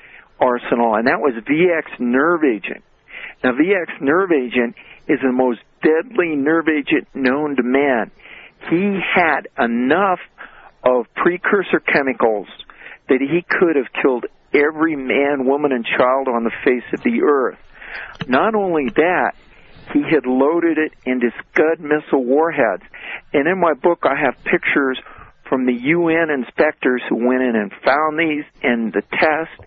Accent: American